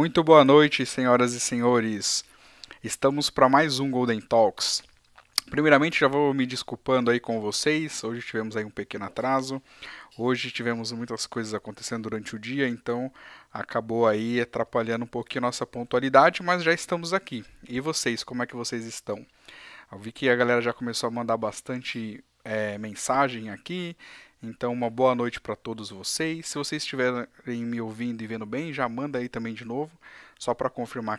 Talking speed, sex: 175 wpm, male